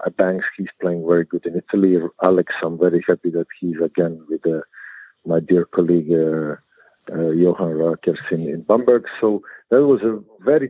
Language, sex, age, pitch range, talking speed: English, male, 50-69, 90-110 Hz, 170 wpm